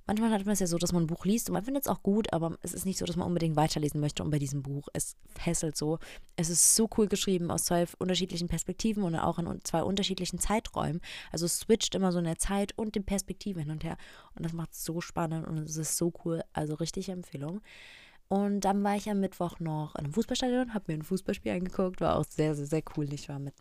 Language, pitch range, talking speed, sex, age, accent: German, 165-205 Hz, 255 wpm, female, 20-39, German